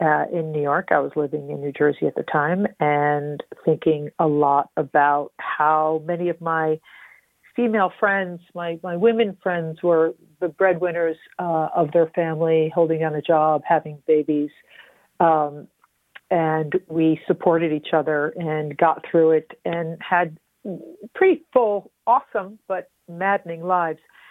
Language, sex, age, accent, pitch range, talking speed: English, female, 50-69, American, 155-180 Hz, 145 wpm